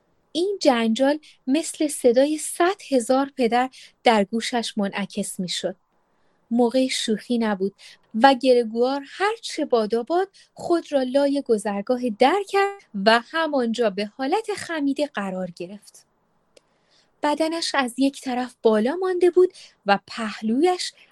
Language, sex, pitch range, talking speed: Persian, female, 220-305 Hz, 115 wpm